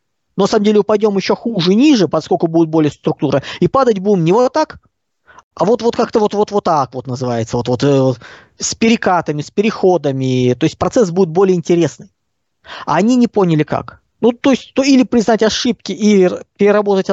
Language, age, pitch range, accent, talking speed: Russian, 20-39, 150-215 Hz, native, 180 wpm